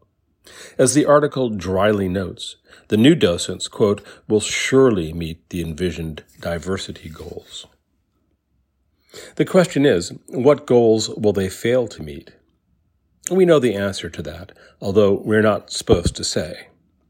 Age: 50-69